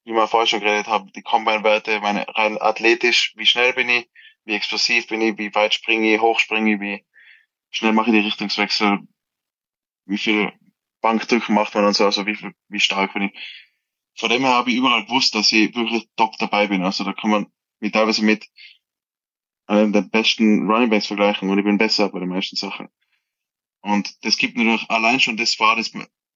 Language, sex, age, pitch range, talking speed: German, male, 20-39, 105-115 Hz, 205 wpm